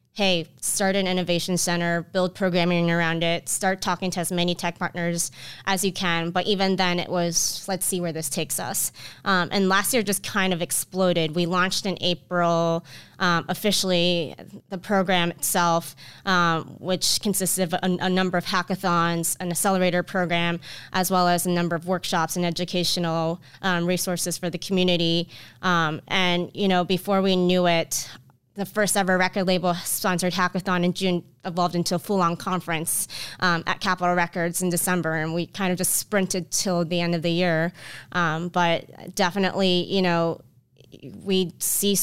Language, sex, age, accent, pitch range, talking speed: English, female, 20-39, American, 170-190 Hz, 175 wpm